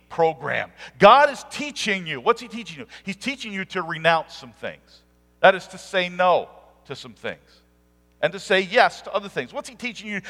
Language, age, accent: English, 50-69, American